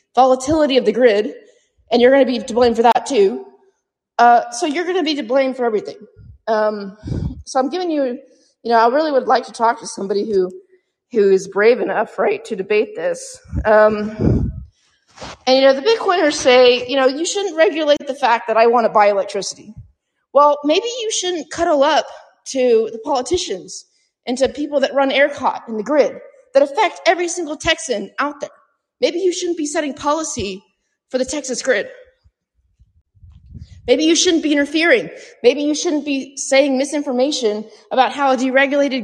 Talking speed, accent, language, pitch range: 180 wpm, American, English, 240-320 Hz